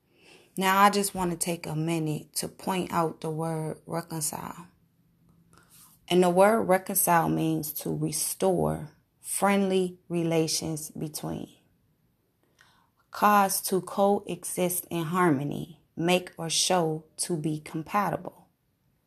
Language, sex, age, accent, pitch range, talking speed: English, female, 20-39, American, 160-190 Hz, 110 wpm